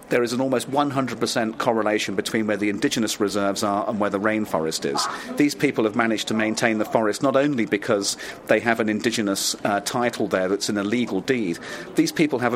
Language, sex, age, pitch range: English, male, 40-59, 105-130 Hz